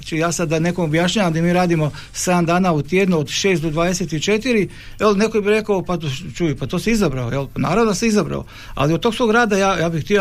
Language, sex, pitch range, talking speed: Croatian, male, 160-210 Hz, 230 wpm